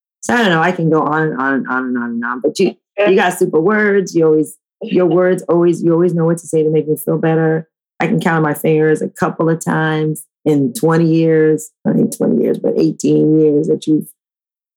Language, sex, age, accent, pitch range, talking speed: English, female, 30-49, American, 150-175 Hz, 245 wpm